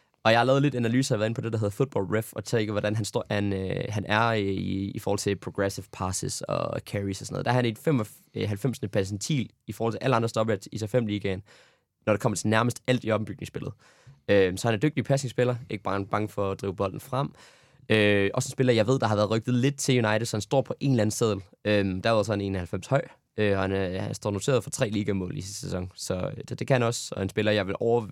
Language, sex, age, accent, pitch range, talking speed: Danish, male, 20-39, native, 100-125 Hz, 265 wpm